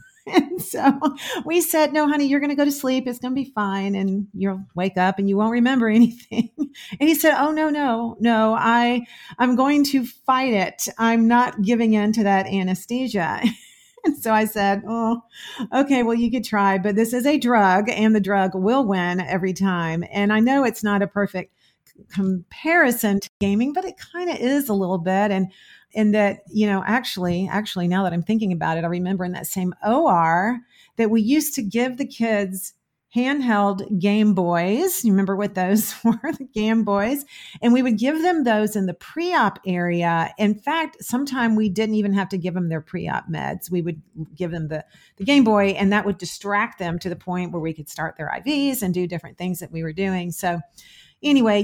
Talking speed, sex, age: 210 wpm, female, 40-59